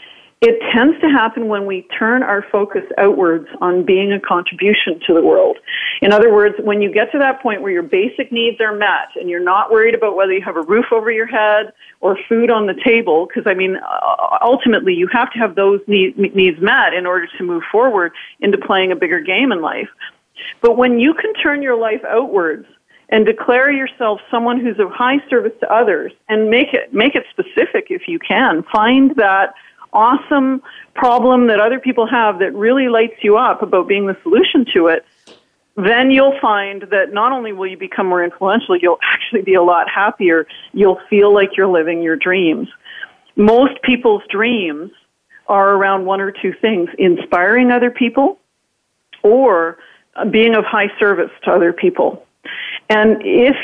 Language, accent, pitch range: English, American, 195-255 Hz